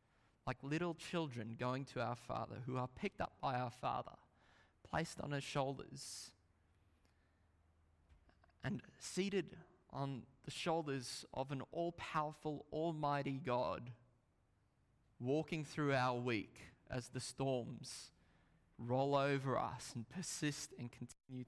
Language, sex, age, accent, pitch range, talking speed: English, male, 20-39, Australian, 115-140 Hz, 115 wpm